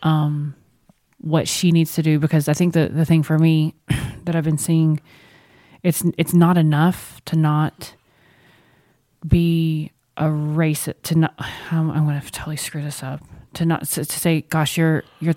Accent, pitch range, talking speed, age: American, 145-160 Hz, 180 wpm, 30-49